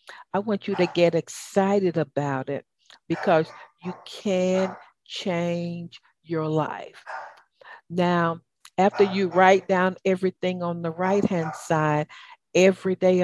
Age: 50-69